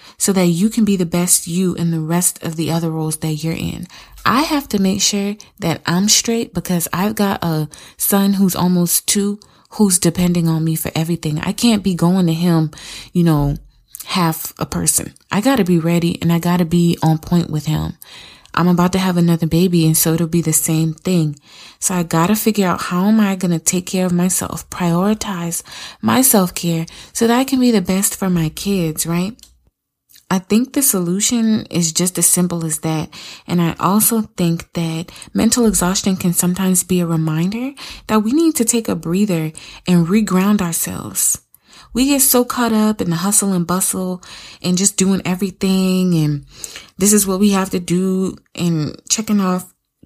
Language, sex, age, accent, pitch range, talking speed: English, female, 20-39, American, 170-205 Hz, 195 wpm